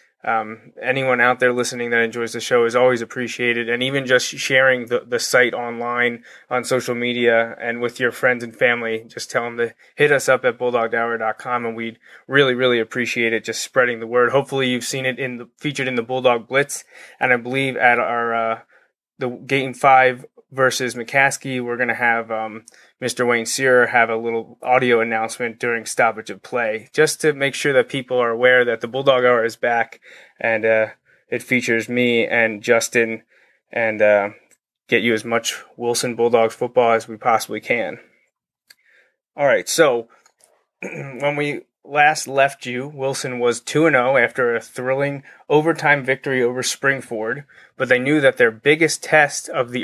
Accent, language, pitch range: American, English, 120-135 Hz